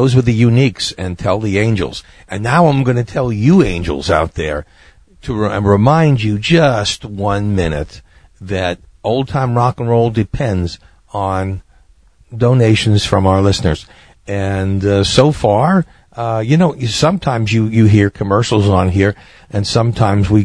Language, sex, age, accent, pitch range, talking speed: English, male, 50-69, American, 90-115 Hz, 155 wpm